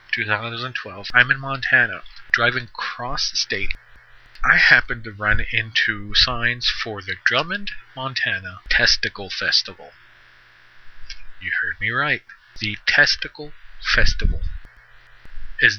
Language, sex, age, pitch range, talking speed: English, male, 30-49, 105-125 Hz, 105 wpm